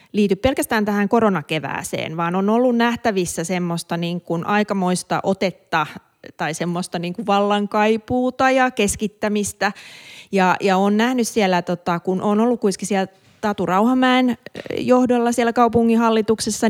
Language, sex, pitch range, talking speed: Finnish, female, 175-225 Hz, 130 wpm